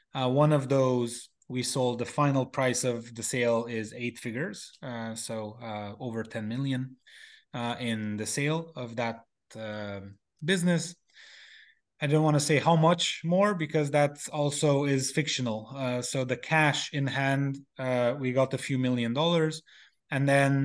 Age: 20-39